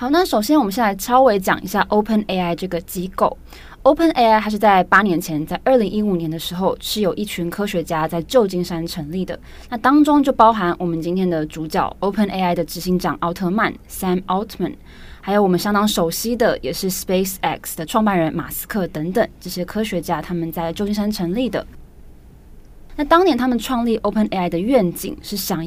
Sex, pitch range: female, 170-215 Hz